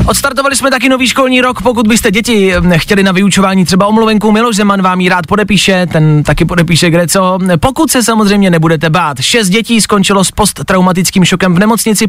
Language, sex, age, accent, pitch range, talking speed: Czech, male, 30-49, native, 155-205 Hz, 185 wpm